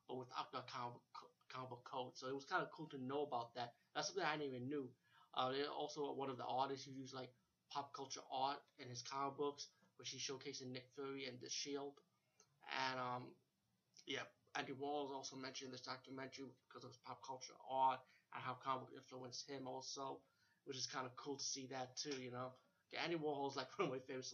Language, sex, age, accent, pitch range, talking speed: English, male, 30-49, American, 125-140 Hz, 215 wpm